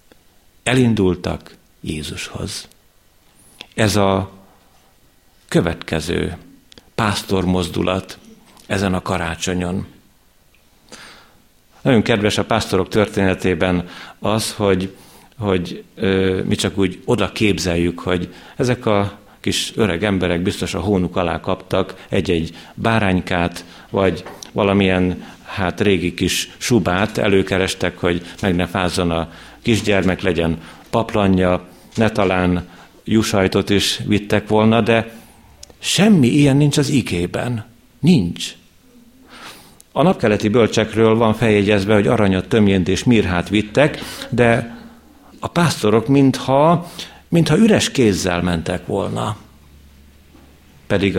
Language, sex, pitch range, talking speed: Hungarian, male, 90-110 Hz, 95 wpm